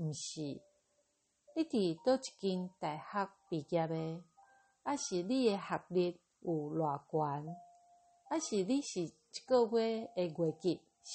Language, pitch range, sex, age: Chinese, 165-265 Hz, female, 50-69